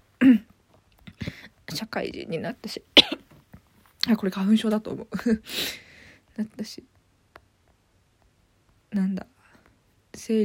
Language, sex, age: Japanese, female, 20-39